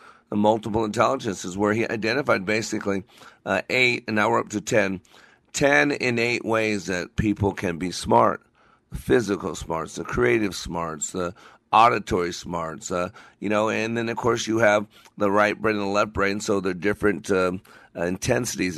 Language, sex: English, male